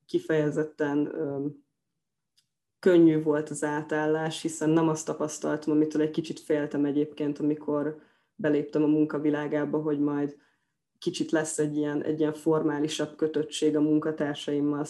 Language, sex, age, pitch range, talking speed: Hungarian, female, 20-39, 150-160 Hz, 125 wpm